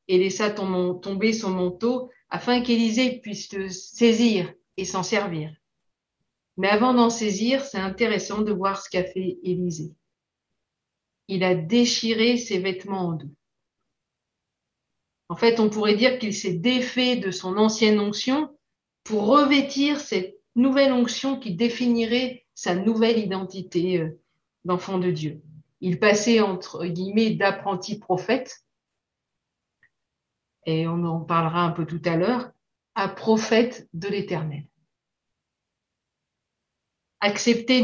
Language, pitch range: French, 180-240 Hz